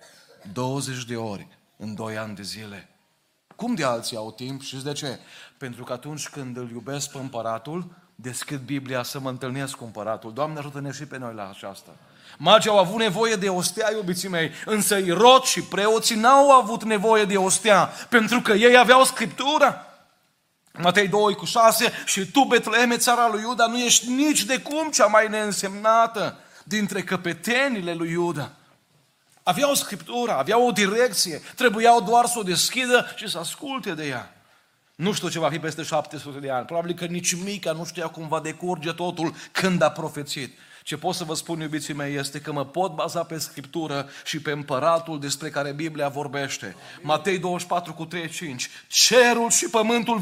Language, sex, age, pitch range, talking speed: Romanian, male, 30-49, 145-220 Hz, 170 wpm